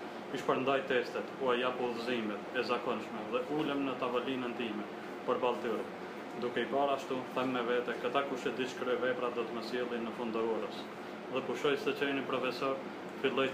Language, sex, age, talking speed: Czech, male, 20-39, 155 wpm